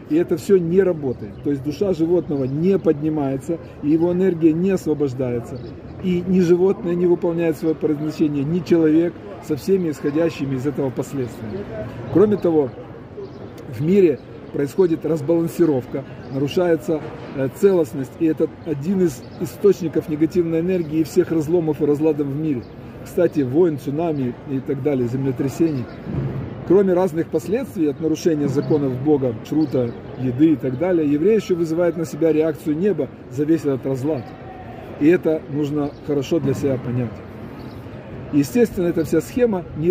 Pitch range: 135-170 Hz